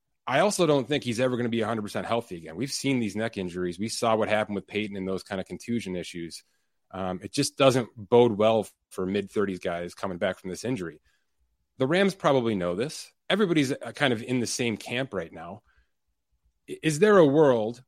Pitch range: 105-135 Hz